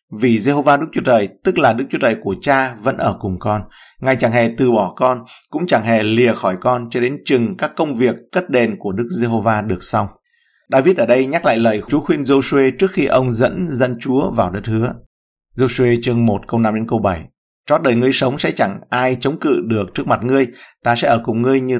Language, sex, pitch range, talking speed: Vietnamese, male, 115-135 Hz, 235 wpm